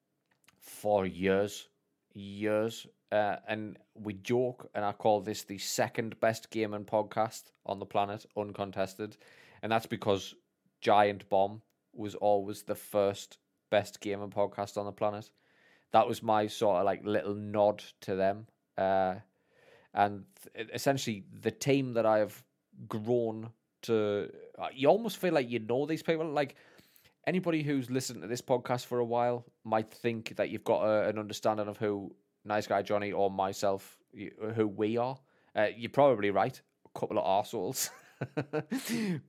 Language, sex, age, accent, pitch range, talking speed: English, male, 20-39, British, 100-125 Hz, 155 wpm